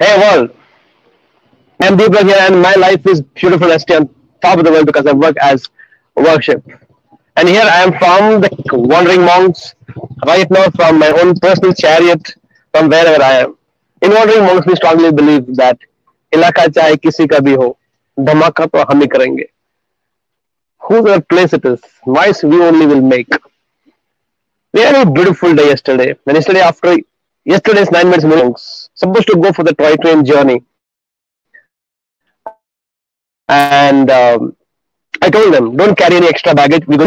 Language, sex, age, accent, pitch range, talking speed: English, male, 30-49, Indian, 150-185 Hz, 155 wpm